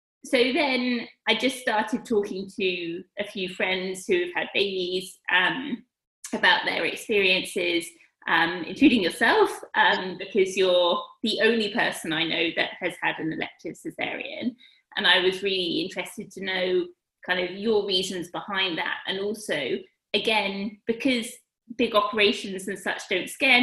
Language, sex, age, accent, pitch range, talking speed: English, female, 20-39, British, 185-240 Hz, 145 wpm